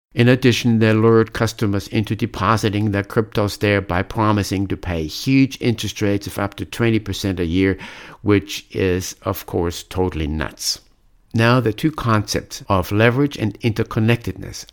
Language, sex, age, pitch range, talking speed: English, male, 60-79, 100-120 Hz, 150 wpm